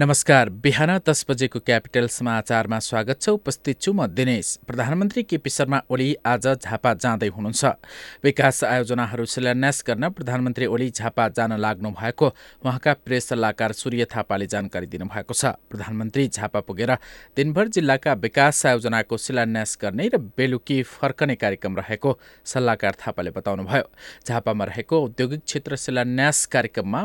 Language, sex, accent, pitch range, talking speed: English, male, Indian, 110-140 Hz, 115 wpm